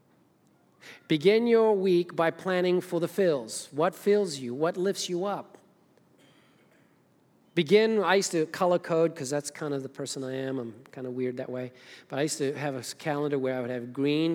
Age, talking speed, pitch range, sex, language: 40-59, 195 wpm, 130-160 Hz, male, English